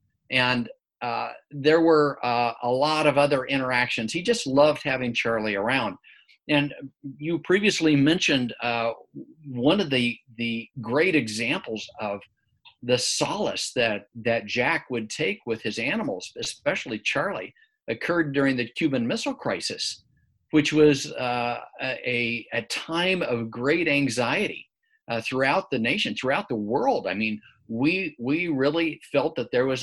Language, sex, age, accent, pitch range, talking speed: English, male, 50-69, American, 115-150 Hz, 145 wpm